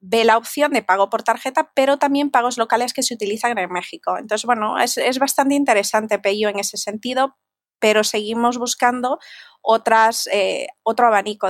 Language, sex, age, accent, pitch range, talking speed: Spanish, female, 20-39, Spanish, 200-235 Hz, 170 wpm